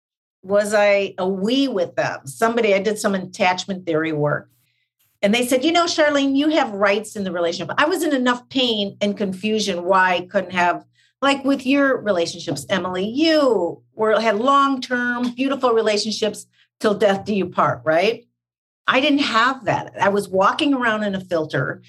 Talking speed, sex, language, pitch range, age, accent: 180 wpm, female, English, 165-225 Hz, 50-69, American